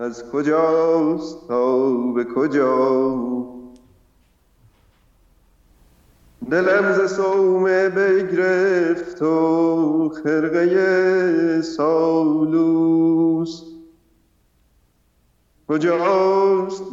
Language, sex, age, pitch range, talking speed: Persian, male, 50-69, 130-165 Hz, 45 wpm